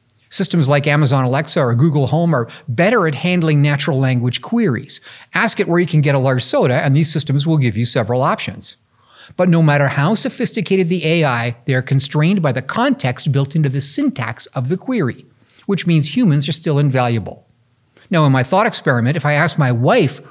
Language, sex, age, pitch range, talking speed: English, male, 50-69, 130-175 Hz, 195 wpm